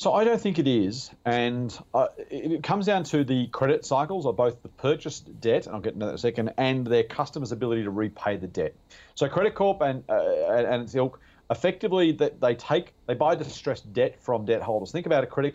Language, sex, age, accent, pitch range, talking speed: English, male, 40-59, Australian, 110-140 Hz, 235 wpm